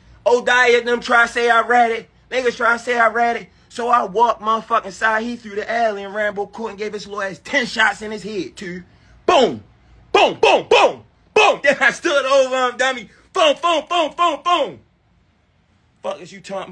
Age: 30-49